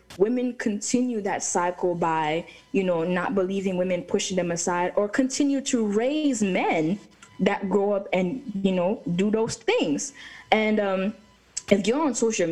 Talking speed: 160 wpm